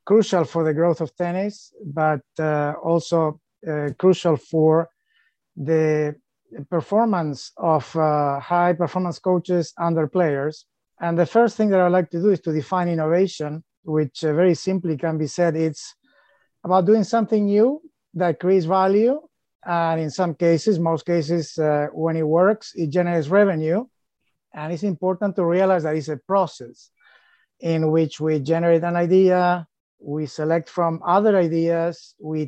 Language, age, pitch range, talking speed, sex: English, 30-49, 160-190 Hz, 155 wpm, male